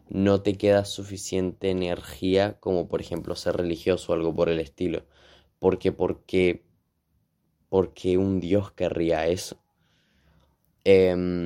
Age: 20-39